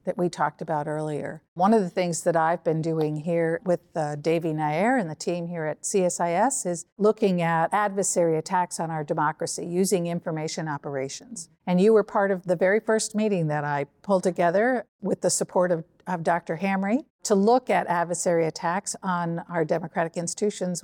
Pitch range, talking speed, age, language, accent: 170-205 Hz, 185 wpm, 50-69, English, American